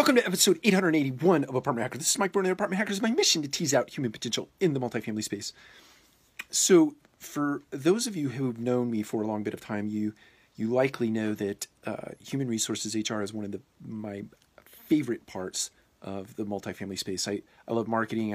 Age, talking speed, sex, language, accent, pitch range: 40-59, 210 wpm, male, English, American, 100-130 Hz